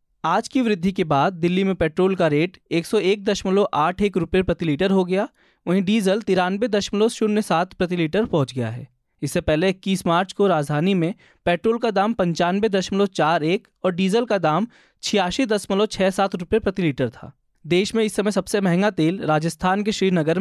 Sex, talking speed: male, 170 wpm